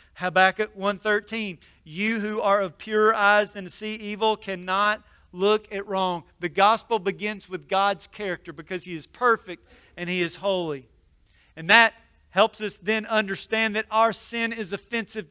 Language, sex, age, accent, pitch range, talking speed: English, male, 40-59, American, 185-220 Hz, 160 wpm